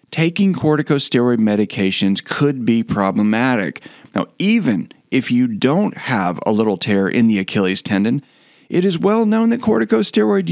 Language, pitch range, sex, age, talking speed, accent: English, 110-185 Hz, male, 40-59, 145 wpm, American